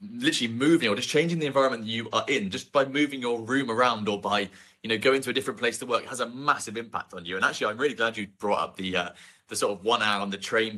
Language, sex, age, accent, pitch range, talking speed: English, male, 30-49, British, 105-140 Hz, 290 wpm